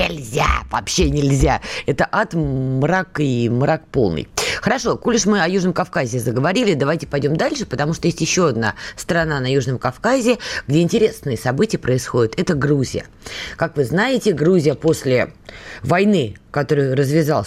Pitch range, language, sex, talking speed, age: 130-185 Hz, Russian, female, 150 wpm, 20-39